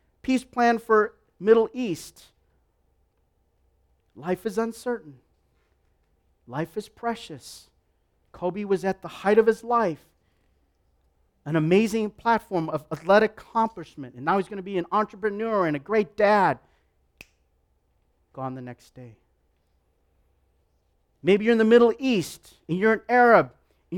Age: 40-59